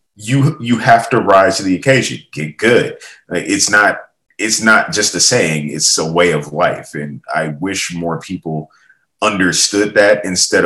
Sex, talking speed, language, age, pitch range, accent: male, 170 wpm, English, 30-49, 75-100 Hz, American